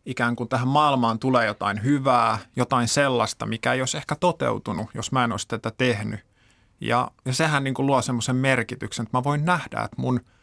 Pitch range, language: 120-145 Hz, Finnish